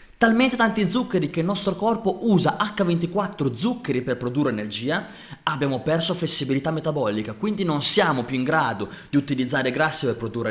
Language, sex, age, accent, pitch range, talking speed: Italian, male, 20-39, native, 120-190 Hz, 160 wpm